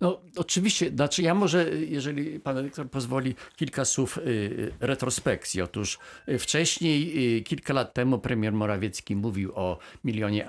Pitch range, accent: 100-125 Hz, native